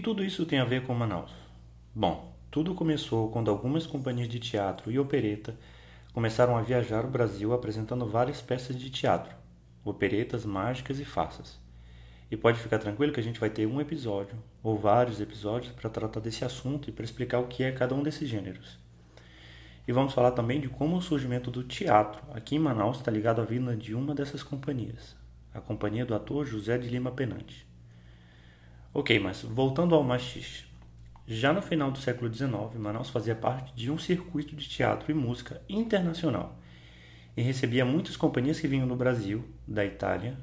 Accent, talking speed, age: Brazilian, 180 wpm, 30-49